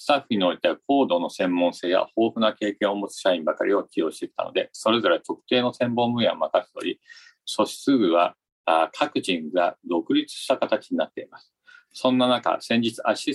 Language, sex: Japanese, male